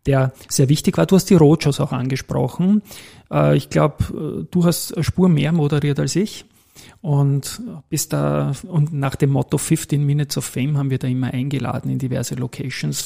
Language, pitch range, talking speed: German, 120-155 Hz, 180 wpm